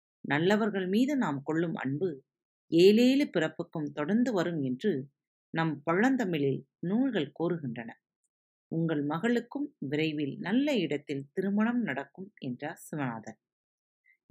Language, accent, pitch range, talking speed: Tamil, native, 140-215 Hz, 95 wpm